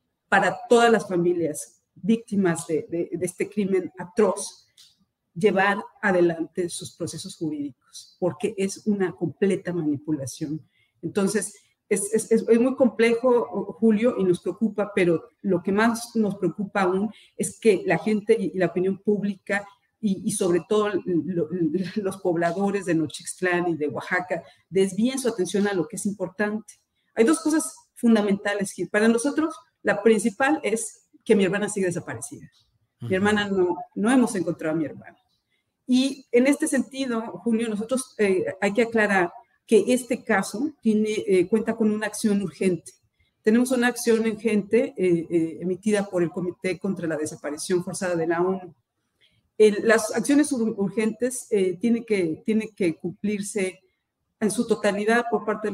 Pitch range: 175-220 Hz